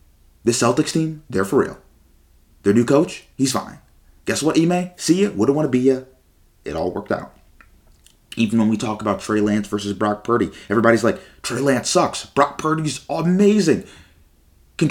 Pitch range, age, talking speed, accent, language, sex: 95-130 Hz, 30-49, 175 wpm, American, English, male